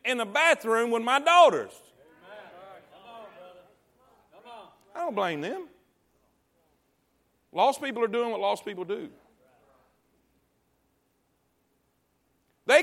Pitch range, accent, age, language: 140-230 Hz, American, 40-59, English